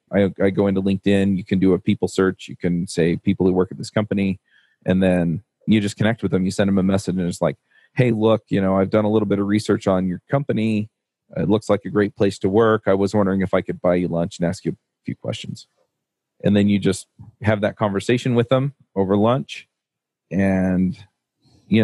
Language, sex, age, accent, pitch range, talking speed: English, male, 30-49, American, 90-105 Hz, 235 wpm